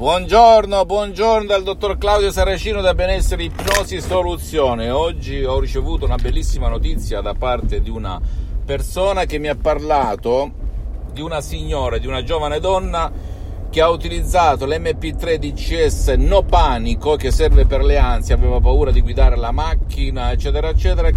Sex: male